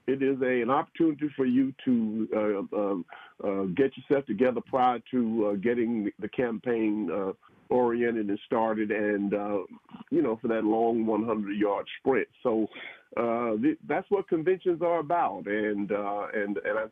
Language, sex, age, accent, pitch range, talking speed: English, male, 50-69, American, 110-140 Hz, 165 wpm